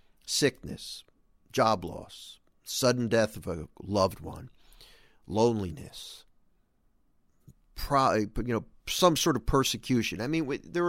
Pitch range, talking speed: 105-155 Hz, 115 wpm